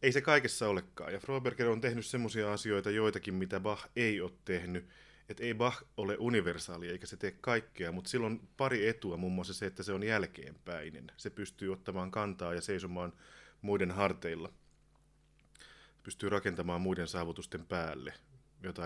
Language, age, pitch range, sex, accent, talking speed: Finnish, 30-49, 90-110 Hz, male, native, 170 wpm